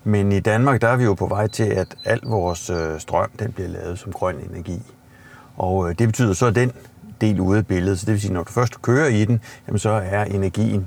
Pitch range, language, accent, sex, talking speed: 95-120 Hz, Danish, native, male, 235 wpm